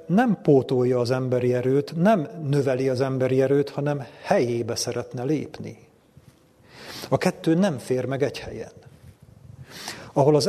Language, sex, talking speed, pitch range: Hungarian, male, 130 wpm, 125-145 Hz